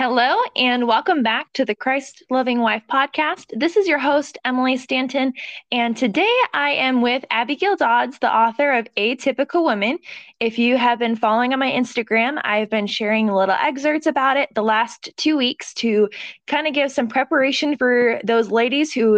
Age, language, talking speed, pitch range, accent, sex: 20-39, English, 180 wpm, 220-275 Hz, American, female